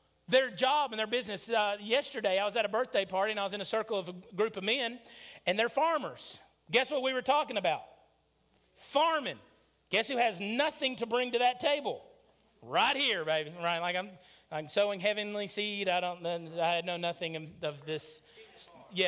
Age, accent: 40-59, American